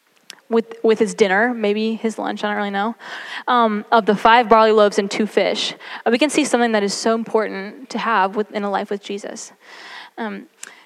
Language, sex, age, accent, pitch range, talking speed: English, female, 10-29, American, 205-240 Hz, 200 wpm